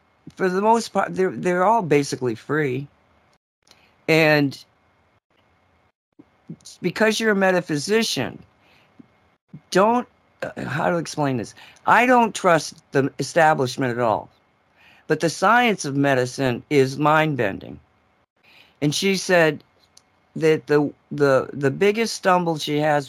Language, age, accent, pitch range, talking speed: English, 50-69, American, 135-170 Hz, 120 wpm